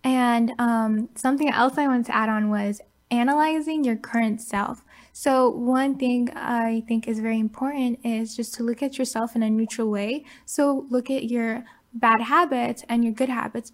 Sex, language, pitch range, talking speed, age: female, English, 225-255 Hz, 185 wpm, 10-29